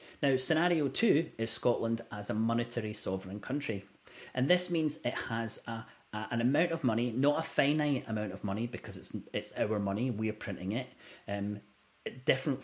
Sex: male